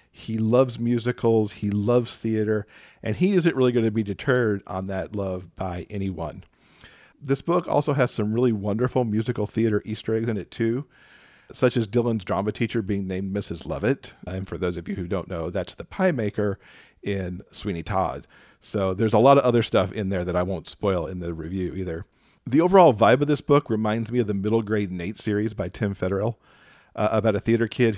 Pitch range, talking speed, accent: 100-120 Hz, 205 wpm, American